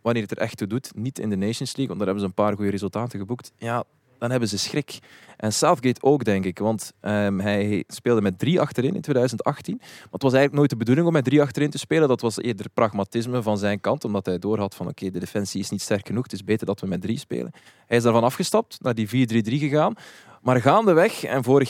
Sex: male